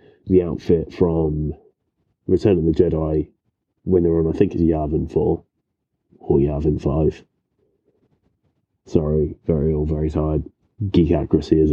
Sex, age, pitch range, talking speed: male, 30-49, 80-90 Hz, 135 wpm